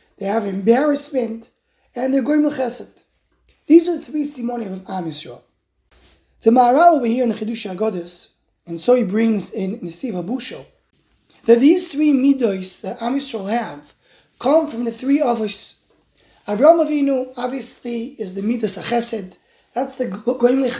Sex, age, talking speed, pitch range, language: male, 20-39, 155 wpm, 205-270 Hz, English